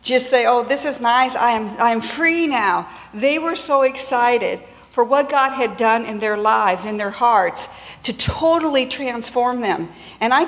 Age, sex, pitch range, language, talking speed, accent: 50-69, female, 245-280 Hz, English, 190 wpm, American